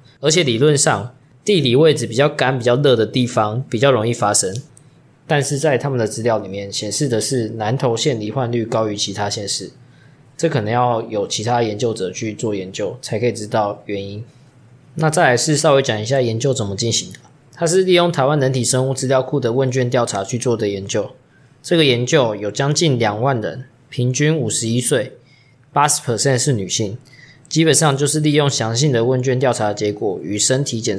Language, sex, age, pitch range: Chinese, male, 20-39, 115-140 Hz